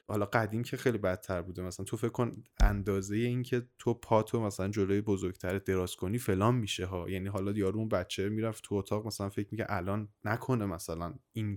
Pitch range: 95-115 Hz